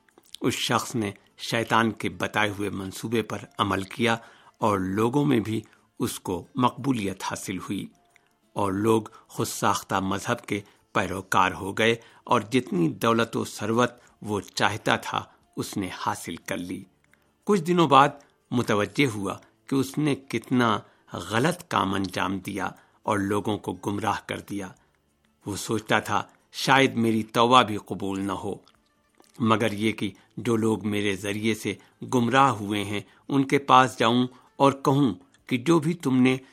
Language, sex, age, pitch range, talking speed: Urdu, male, 60-79, 100-130 Hz, 155 wpm